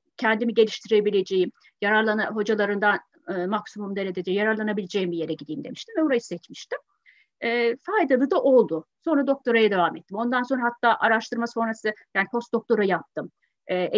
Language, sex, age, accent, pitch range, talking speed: Turkish, female, 30-49, native, 205-290 Hz, 135 wpm